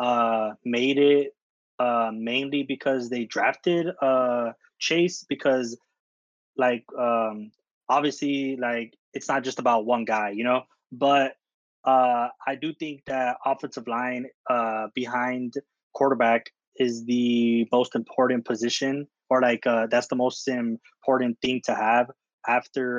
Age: 20-39